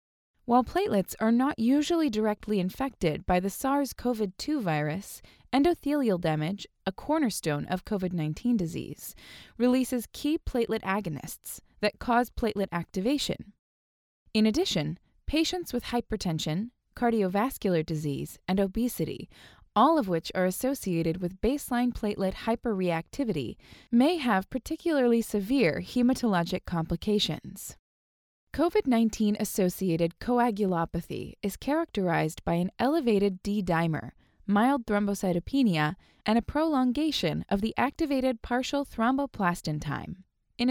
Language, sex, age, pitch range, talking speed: English, female, 20-39, 175-255 Hz, 105 wpm